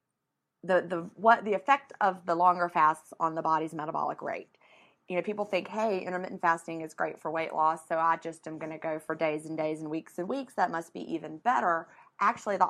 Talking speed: 225 wpm